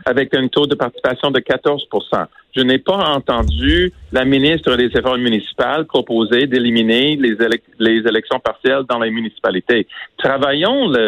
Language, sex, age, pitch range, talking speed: French, male, 50-69, 120-190 Hz, 140 wpm